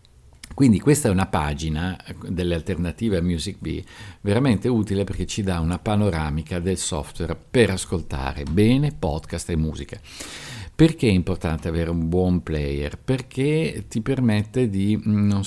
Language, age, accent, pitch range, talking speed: Italian, 50-69, native, 90-115 Hz, 140 wpm